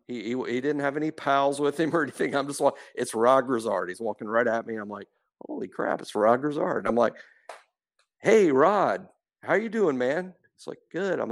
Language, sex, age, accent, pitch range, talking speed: English, male, 50-69, American, 120-145 Hz, 230 wpm